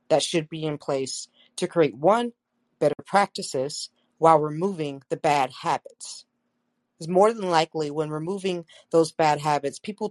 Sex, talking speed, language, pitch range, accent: female, 150 wpm, English, 140-185 Hz, American